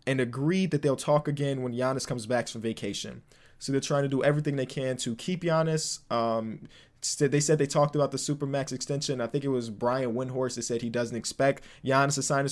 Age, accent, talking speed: 20-39, American, 225 wpm